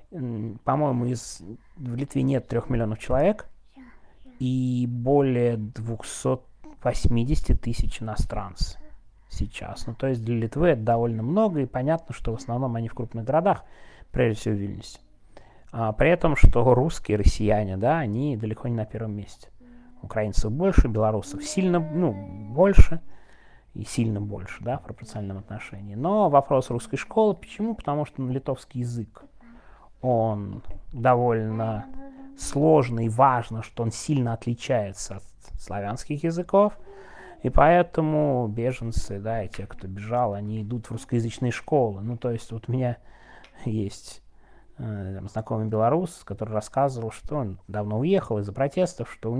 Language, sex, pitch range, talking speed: Russian, male, 110-140 Hz, 140 wpm